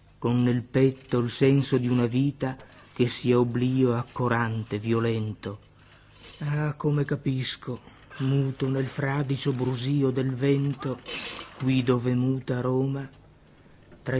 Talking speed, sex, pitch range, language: 115 wpm, male, 120-135 Hz, French